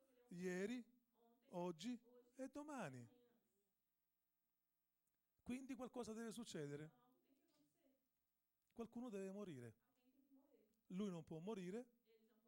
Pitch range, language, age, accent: 165-245 Hz, Portuguese, 40-59, Italian